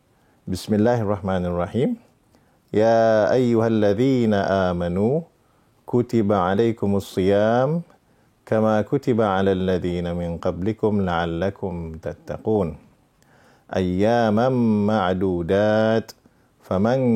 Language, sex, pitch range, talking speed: English, male, 100-125 Hz, 75 wpm